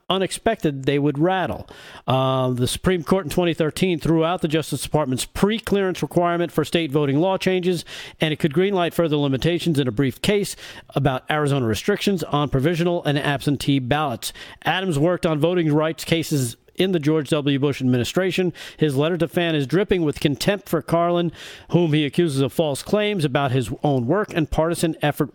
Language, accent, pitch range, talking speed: English, American, 145-180 Hz, 180 wpm